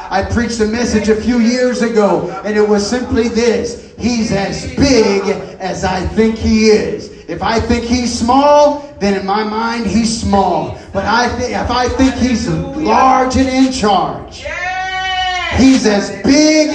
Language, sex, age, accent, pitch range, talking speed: English, male, 30-49, American, 195-260 Hz, 160 wpm